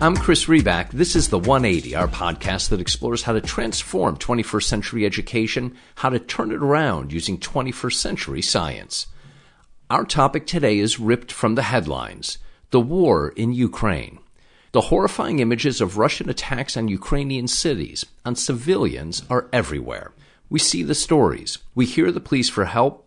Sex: male